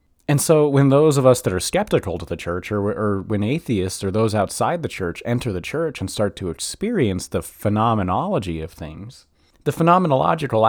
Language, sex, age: English, male, 30-49